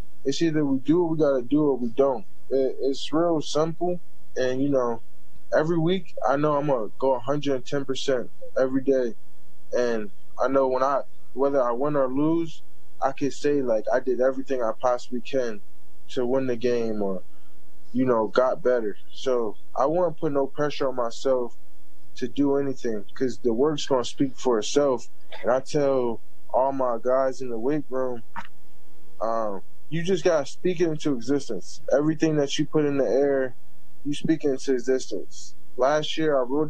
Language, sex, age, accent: English, male, 20-39, American